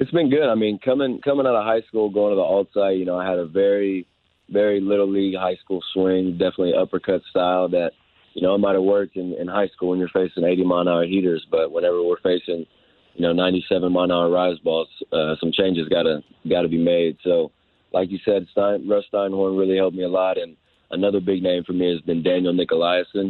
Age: 20-39